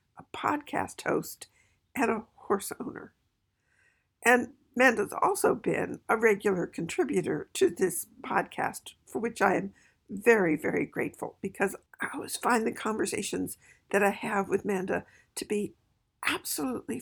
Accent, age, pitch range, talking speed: American, 60-79, 195-260 Hz, 135 wpm